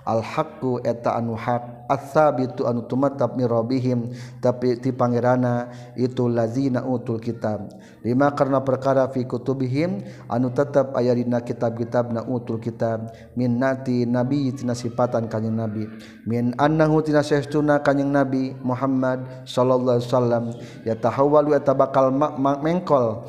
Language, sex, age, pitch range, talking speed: Indonesian, male, 50-69, 120-140 Hz, 120 wpm